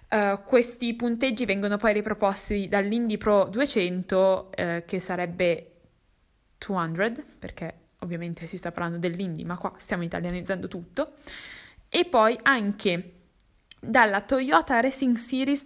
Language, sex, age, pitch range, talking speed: Italian, female, 10-29, 185-235 Hz, 120 wpm